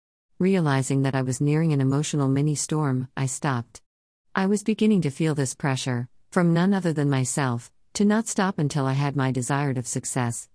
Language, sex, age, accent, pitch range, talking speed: English, female, 50-69, American, 130-170 Hz, 190 wpm